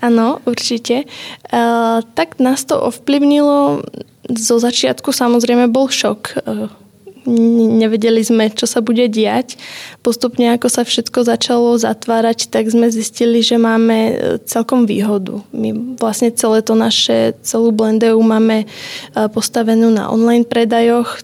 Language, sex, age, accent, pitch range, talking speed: Czech, female, 10-29, native, 220-240 Hz, 125 wpm